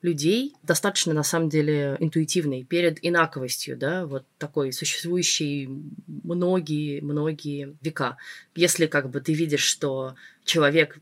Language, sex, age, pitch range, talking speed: Russian, female, 20-39, 140-175 Hz, 120 wpm